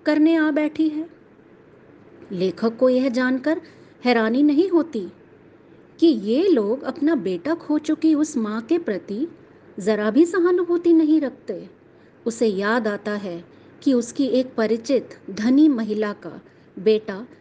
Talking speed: 130 wpm